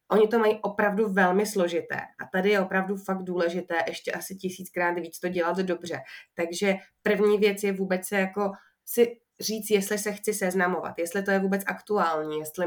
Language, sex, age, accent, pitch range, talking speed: Czech, female, 20-39, native, 170-195 Hz, 180 wpm